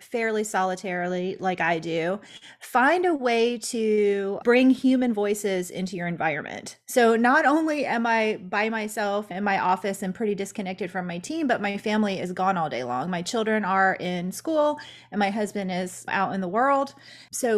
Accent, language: American, English